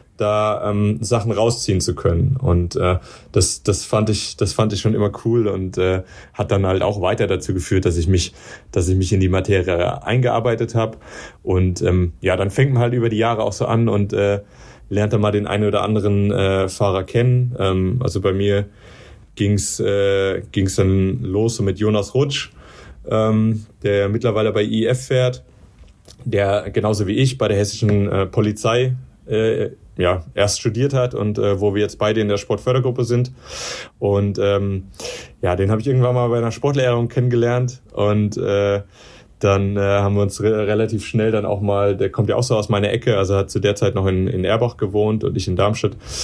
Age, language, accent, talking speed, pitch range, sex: 30-49, German, German, 200 wpm, 95-115 Hz, male